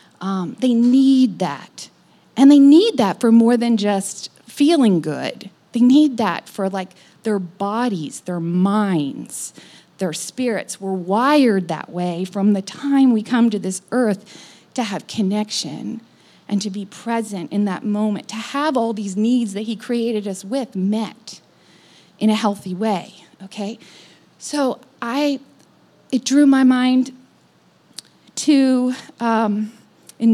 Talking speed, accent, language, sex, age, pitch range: 140 wpm, American, English, female, 40-59, 200-265 Hz